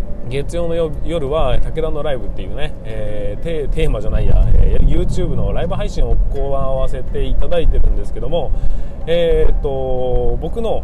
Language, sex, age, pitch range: Japanese, male, 20-39, 115-165 Hz